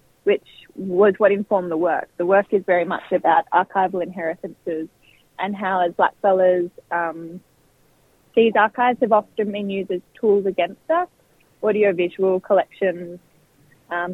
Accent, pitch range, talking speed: Australian, 180-220 Hz, 135 wpm